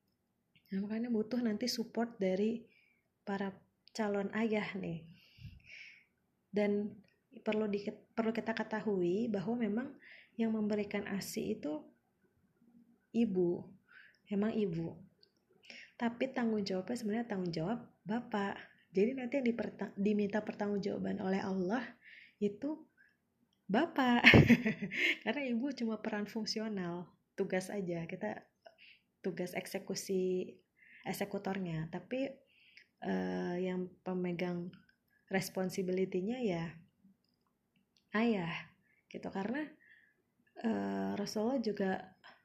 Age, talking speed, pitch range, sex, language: 20-39, 90 wpm, 190-220 Hz, female, Indonesian